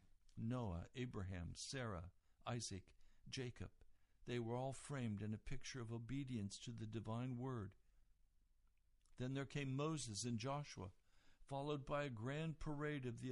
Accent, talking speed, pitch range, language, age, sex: American, 140 wpm, 95-140 Hz, English, 60-79, male